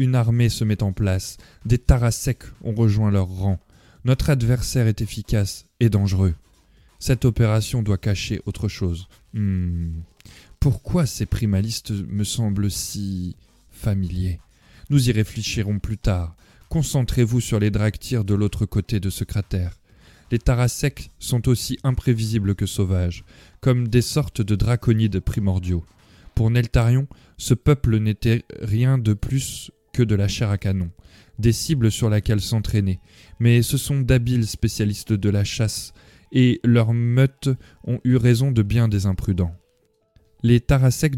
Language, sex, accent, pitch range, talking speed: French, male, French, 100-120 Hz, 145 wpm